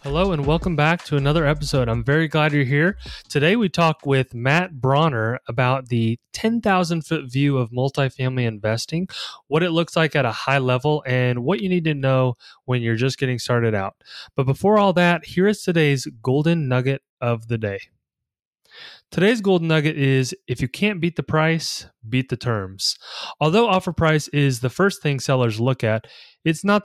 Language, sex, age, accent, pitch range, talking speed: English, male, 30-49, American, 125-165 Hz, 185 wpm